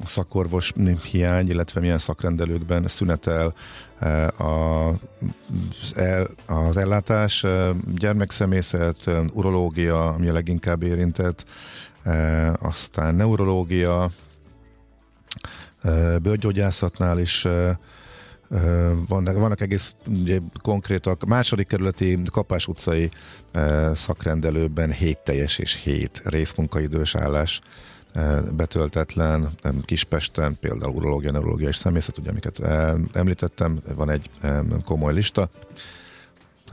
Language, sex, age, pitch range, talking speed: Hungarian, male, 50-69, 80-95 Hz, 75 wpm